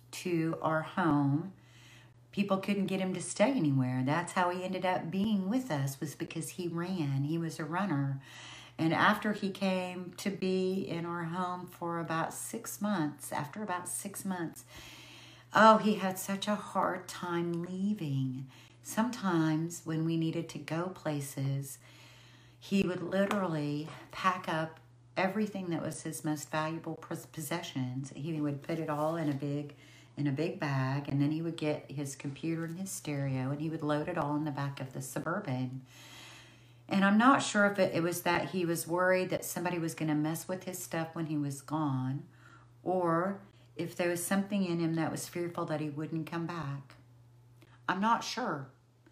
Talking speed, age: 180 wpm, 50-69